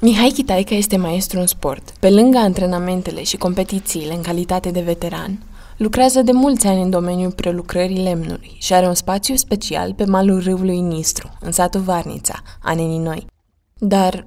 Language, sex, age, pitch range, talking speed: Romanian, female, 20-39, 175-215 Hz, 160 wpm